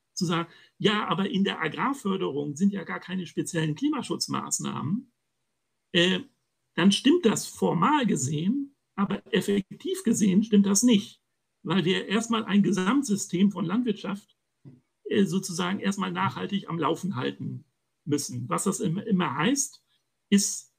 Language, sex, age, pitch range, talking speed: German, male, 60-79, 160-205 Hz, 130 wpm